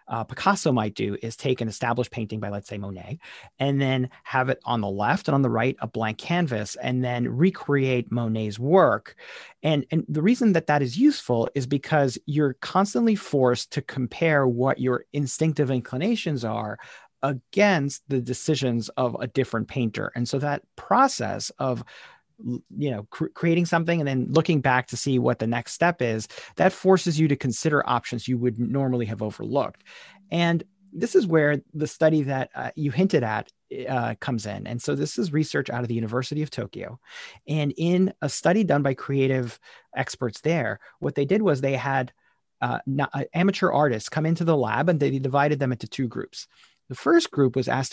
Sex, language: male, English